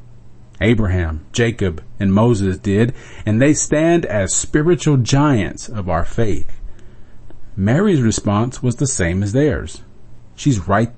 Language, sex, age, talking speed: English, male, 40-59, 125 wpm